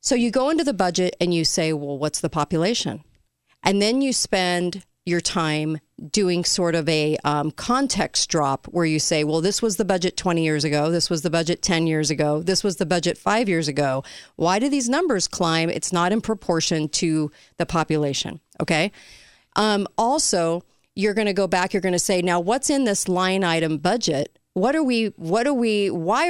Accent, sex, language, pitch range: American, female, English, 165-225 Hz